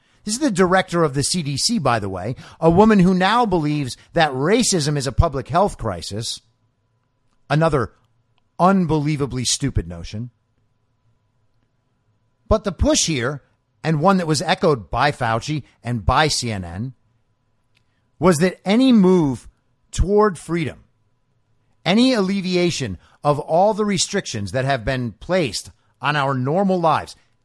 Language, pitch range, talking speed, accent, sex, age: English, 115-165 Hz, 130 wpm, American, male, 50-69